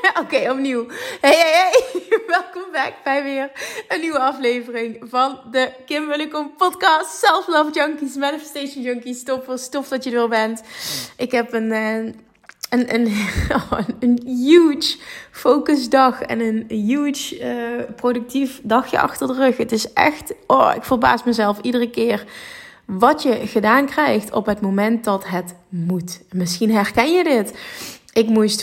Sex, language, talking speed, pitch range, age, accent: female, Dutch, 145 wpm, 210-265 Hz, 20-39, Dutch